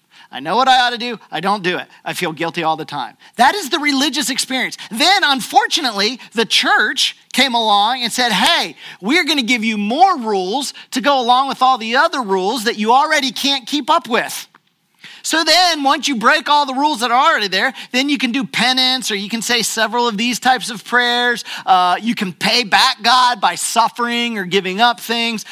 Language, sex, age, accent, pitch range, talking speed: English, male, 40-59, American, 215-295 Hz, 215 wpm